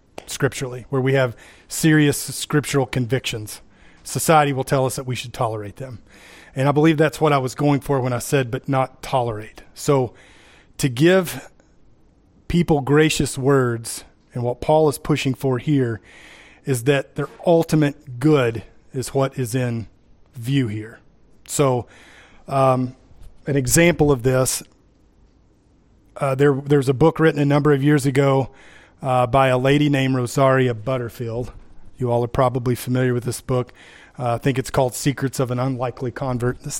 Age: 30-49